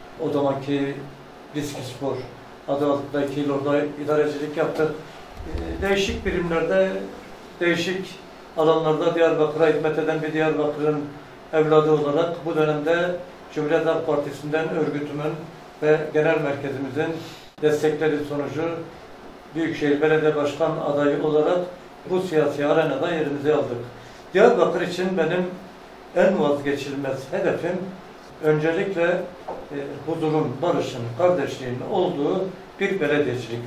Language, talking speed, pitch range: Turkish, 95 wpm, 145-180 Hz